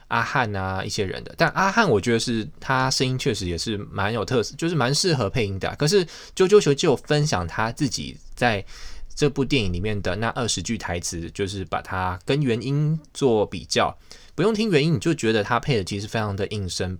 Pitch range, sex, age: 95-135 Hz, male, 20-39